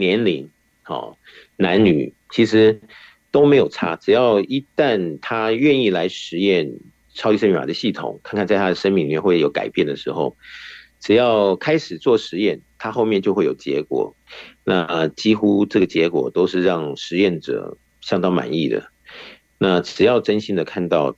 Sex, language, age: male, Chinese, 50-69